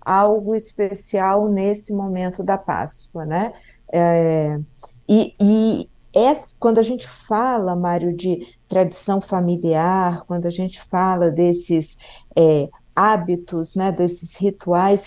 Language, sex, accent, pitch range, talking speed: Portuguese, female, Brazilian, 170-205 Hz, 100 wpm